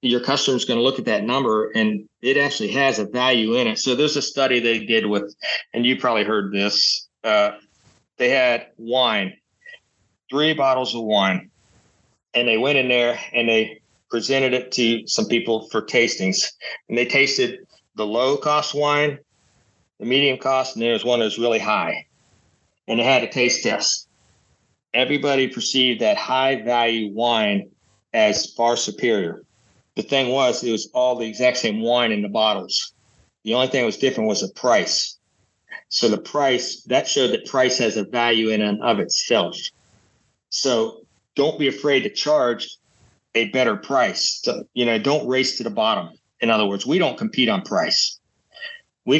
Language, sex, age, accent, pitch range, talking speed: English, male, 40-59, American, 115-135 Hz, 175 wpm